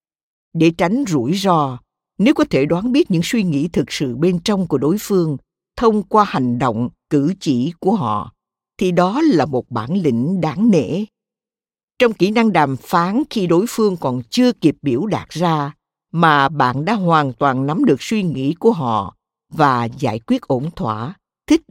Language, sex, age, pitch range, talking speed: Vietnamese, female, 60-79, 135-200 Hz, 180 wpm